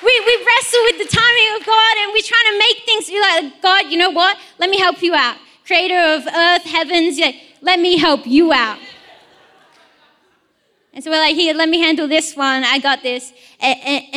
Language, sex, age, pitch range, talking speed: English, female, 20-39, 270-350 Hz, 210 wpm